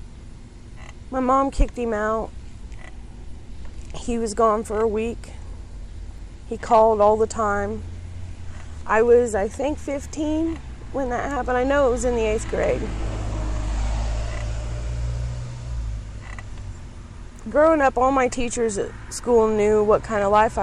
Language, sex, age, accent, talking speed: English, female, 30-49, American, 130 wpm